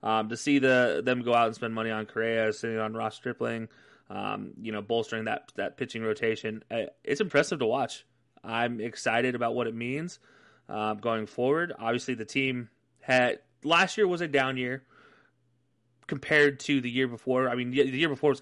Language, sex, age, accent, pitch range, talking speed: English, male, 20-39, American, 115-140 Hz, 190 wpm